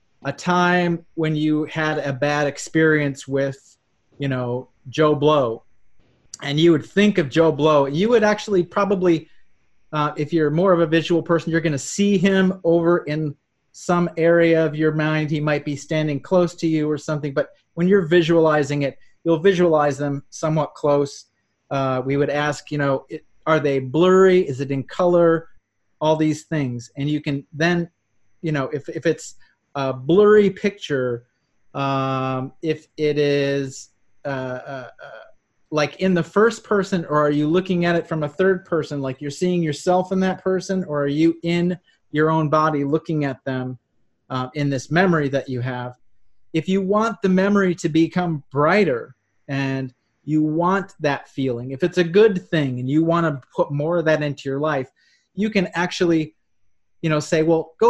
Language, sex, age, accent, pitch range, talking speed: English, male, 30-49, American, 140-175 Hz, 180 wpm